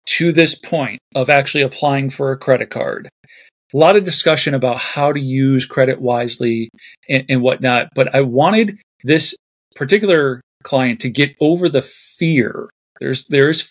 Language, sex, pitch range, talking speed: English, male, 130-170 Hz, 160 wpm